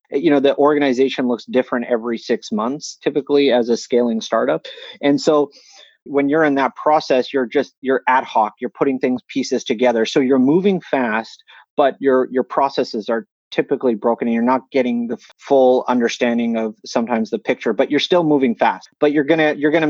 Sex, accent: male, American